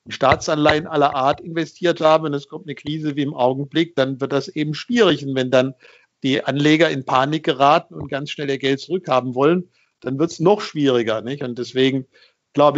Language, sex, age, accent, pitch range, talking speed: German, male, 50-69, German, 140-170 Hz, 200 wpm